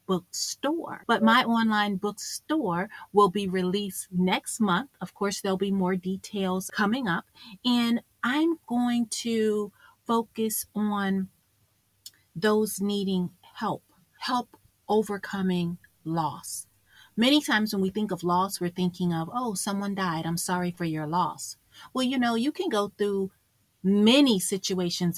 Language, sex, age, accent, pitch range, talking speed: English, female, 30-49, American, 180-225 Hz, 135 wpm